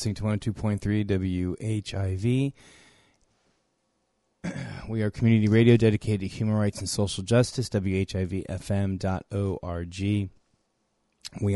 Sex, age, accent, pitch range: male, 30-49, American, 90-110 Hz